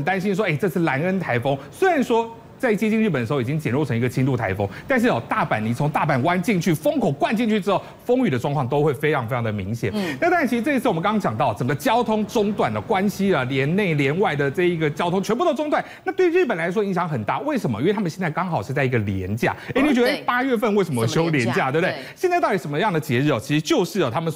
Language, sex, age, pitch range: Chinese, male, 30-49, 135-215 Hz